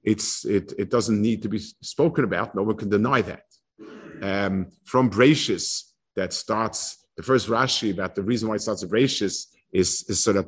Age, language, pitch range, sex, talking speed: 50-69, English, 105-140 Hz, male, 195 wpm